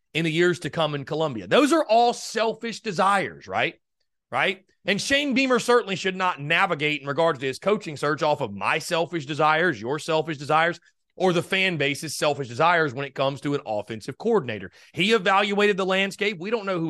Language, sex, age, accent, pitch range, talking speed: English, male, 30-49, American, 135-190 Hz, 200 wpm